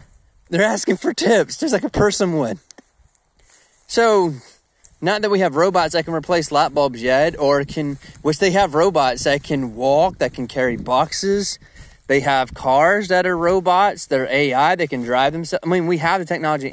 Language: English